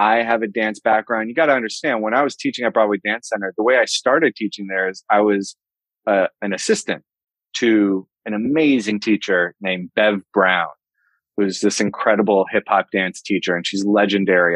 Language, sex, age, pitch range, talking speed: English, male, 30-49, 100-120 Hz, 190 wpm